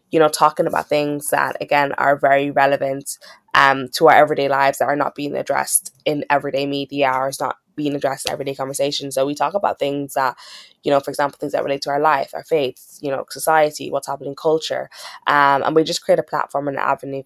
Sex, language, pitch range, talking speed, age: female, English, 140-160 Hz, 225 wpm, 10-29